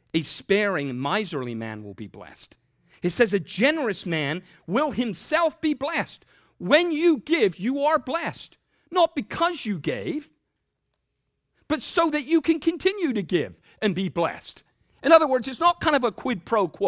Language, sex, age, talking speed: English, male, 50-69, 170 wpm